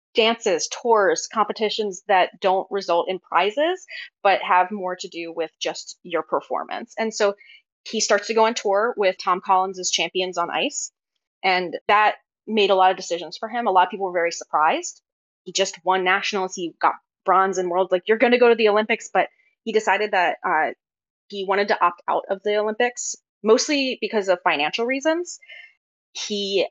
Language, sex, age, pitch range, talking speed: English, female, 20-39, 175-215 Hz, 185 wpm